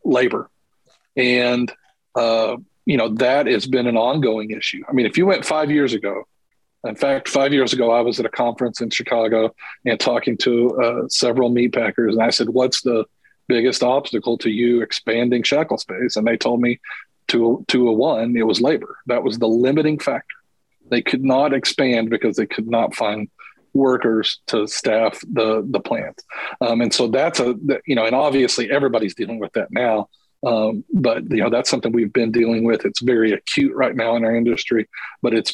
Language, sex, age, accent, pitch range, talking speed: English, male, 40-59, American, 115-130 Hz, 195 wpm